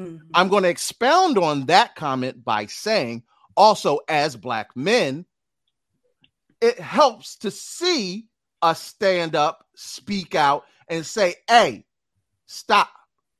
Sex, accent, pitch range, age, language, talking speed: male, American, 160-245 Hz, 30-49, English, 115 wpm